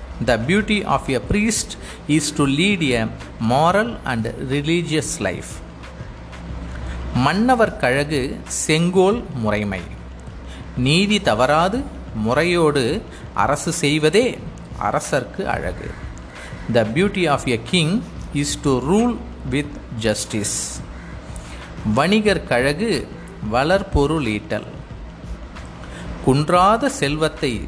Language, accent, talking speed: Tamil, native, 90 wpm